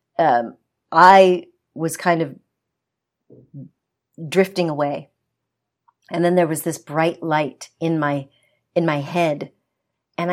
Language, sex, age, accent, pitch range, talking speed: Danish, female, 50-69, American, 160-190 Hz, 115 wpm